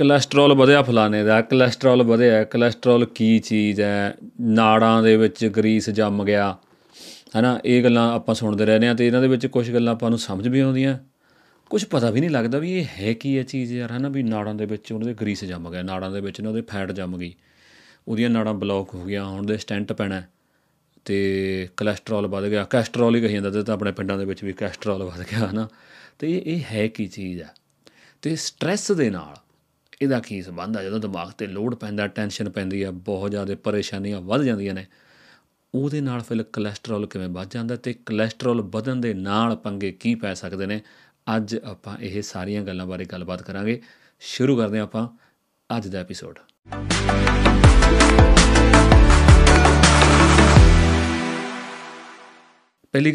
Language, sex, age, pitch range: Punjabi, male, 30-49, 100-120 Hz